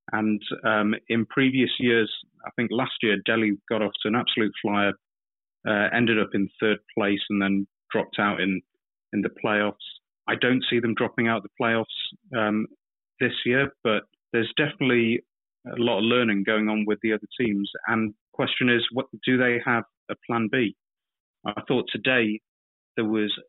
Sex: male